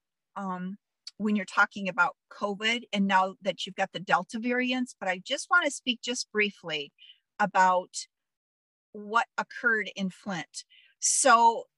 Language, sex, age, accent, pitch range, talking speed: English, female, 50-69, American, 205-255 Hz, 145 wpm